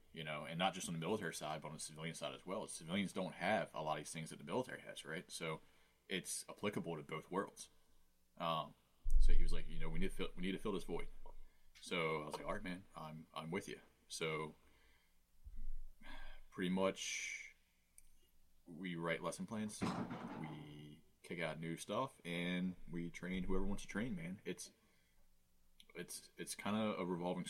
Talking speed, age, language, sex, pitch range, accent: 195 wpm, 30-49, English, male, 75-90 Hz, American